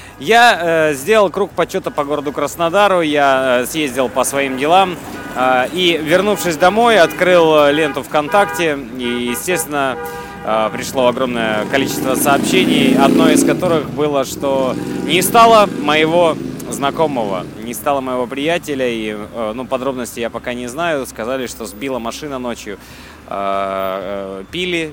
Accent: native